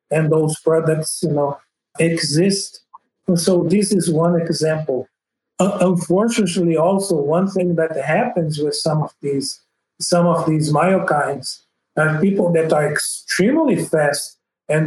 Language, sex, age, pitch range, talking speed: English, male, 50-69, 155-180 Hz, 135 wpm